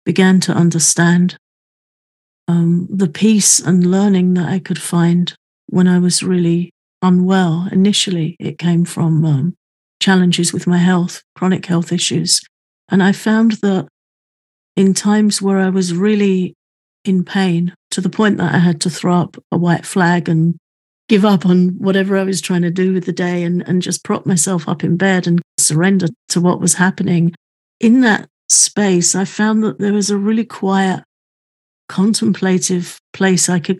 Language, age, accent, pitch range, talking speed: English, 50-69, British, 175-195 Hz, 170 wpm